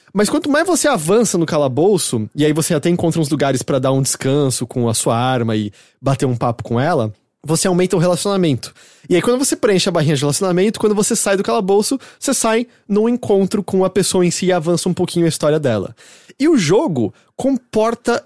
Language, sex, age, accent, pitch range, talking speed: English, male, 20-39, Brazilian, 135-200 Hz, 215 wpm